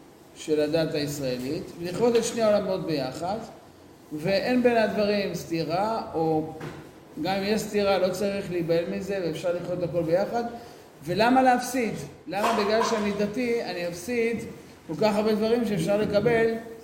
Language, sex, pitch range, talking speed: Hebrew, male, 160-230 Hz, 145 wpm